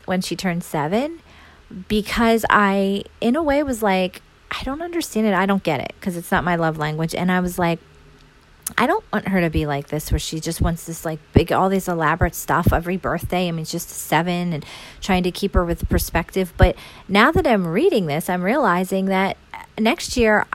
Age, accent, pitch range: 30-49, American, 170-220 Hz